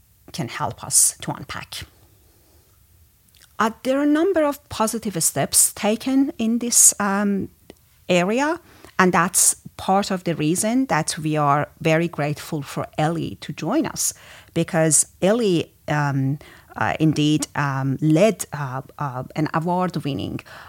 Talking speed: 130 wpm